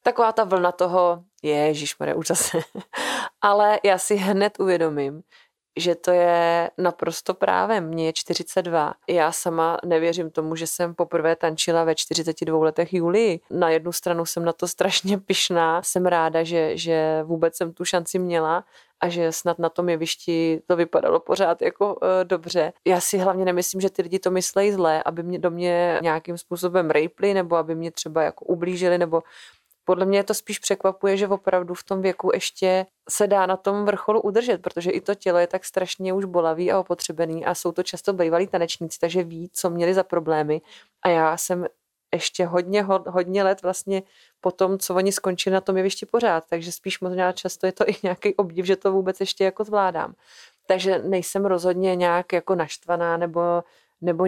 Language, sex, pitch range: Czech, female, 170-190 Hz